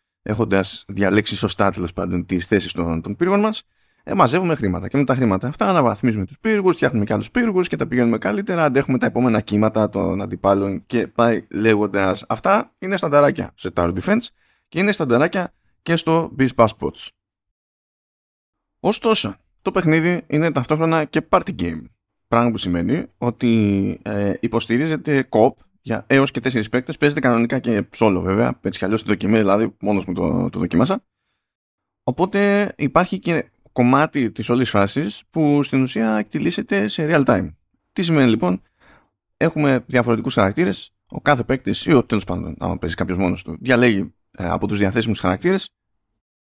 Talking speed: 155 wpm